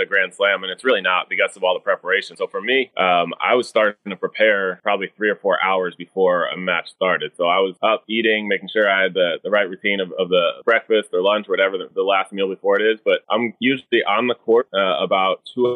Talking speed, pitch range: 255 wpm, 95-120 Hz